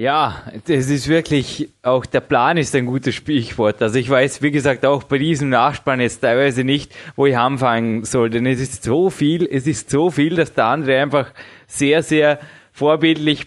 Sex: male